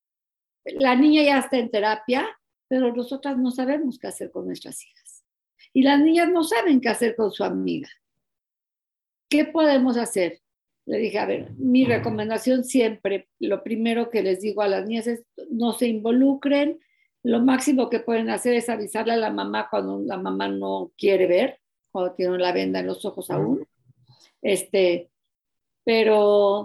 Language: Spanish